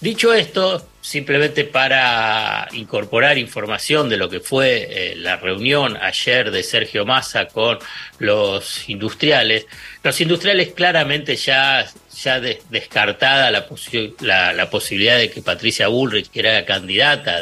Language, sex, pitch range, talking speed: Spanish, male, 125-160 Hz, 130 wpm